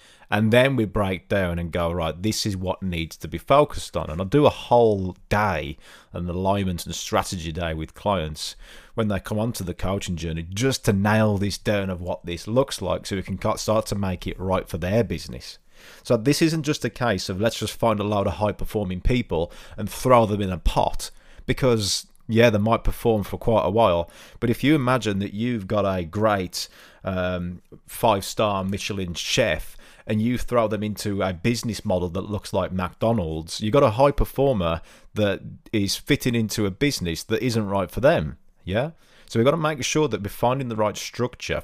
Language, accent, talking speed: English, British, 205 wpm